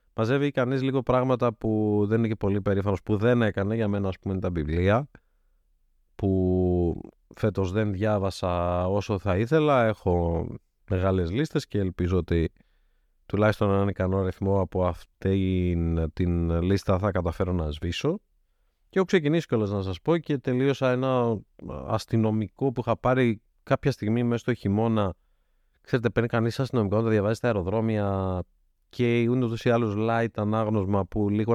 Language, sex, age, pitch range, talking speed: Greek, male, 30-49, 90-120 Hz, 150 wpm